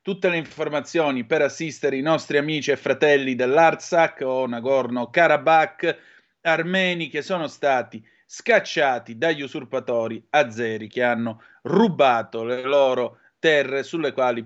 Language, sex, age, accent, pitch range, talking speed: Italian, male, 30-49, native, 125-160 Hz, 120 wpm